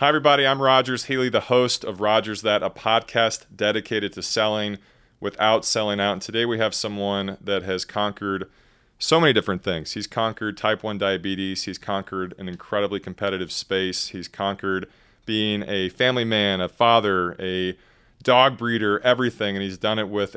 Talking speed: 170 wpm